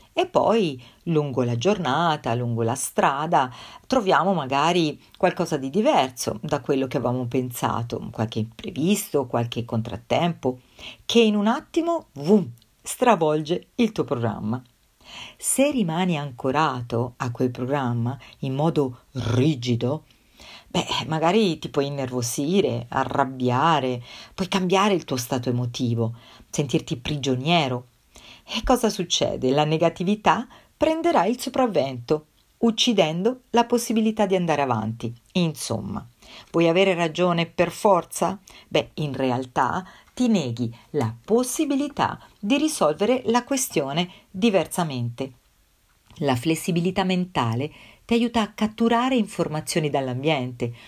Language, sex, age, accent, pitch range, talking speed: Italian, female, 50-69, native, 125-195 Hz, 110 wpm